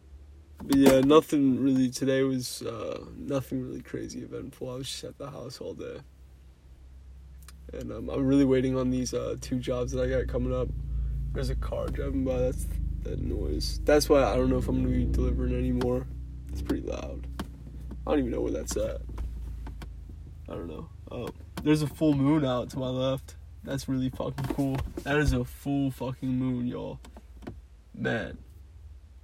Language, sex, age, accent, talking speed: English, male, 20-39, American, 180 wpm